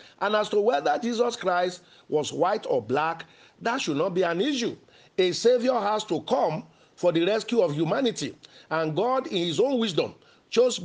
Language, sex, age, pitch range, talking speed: English, male, 50-69, 160-225 Hz, 185 wpm